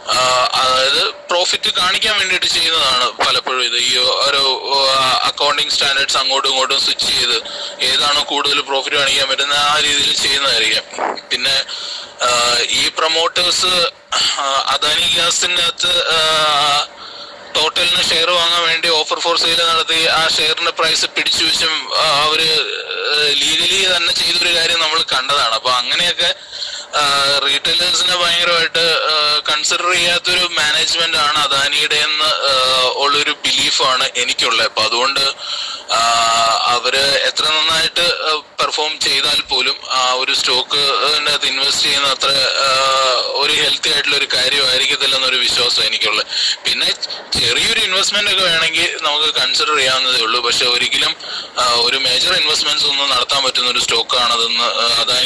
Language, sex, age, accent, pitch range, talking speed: English, male, 20-39, Indian, 135-170 Hz, 85 wpm